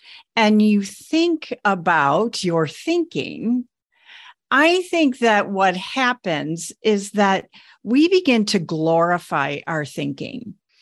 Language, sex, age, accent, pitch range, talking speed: English, female, 50-69, American, 175-235 Hz, 105 wpm